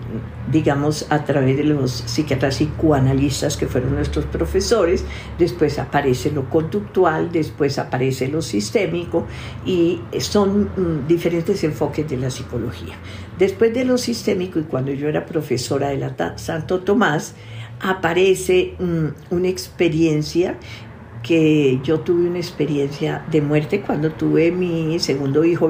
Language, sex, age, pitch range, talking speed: Spanish, female, 50-69, 135-170 Hz, 135 wpm